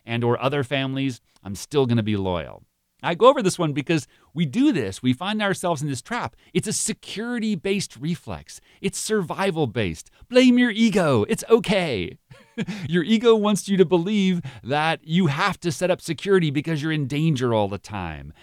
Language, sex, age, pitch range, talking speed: English, male, 40-59, 105-175 Hz, 180 wpm